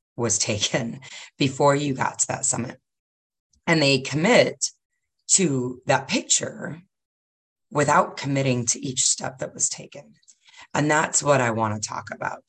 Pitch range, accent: 120-140 Hz, American